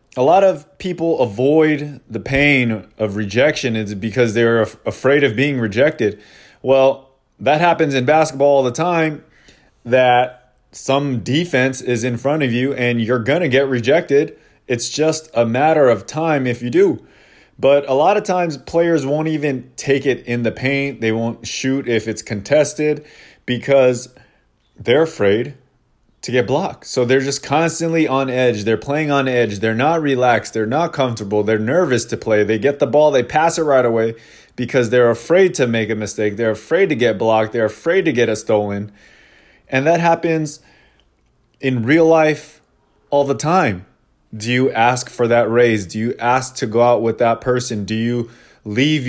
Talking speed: 175 wpm